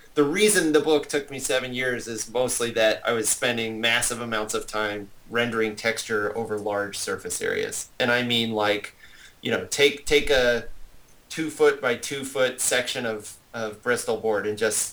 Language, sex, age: English, male, 30-49